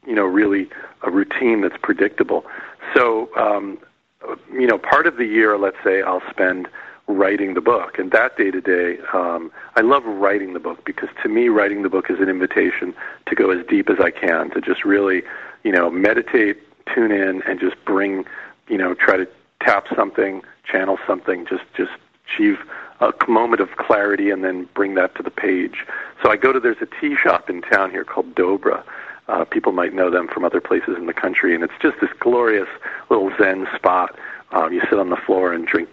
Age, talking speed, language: 40-59, 200 wpm, English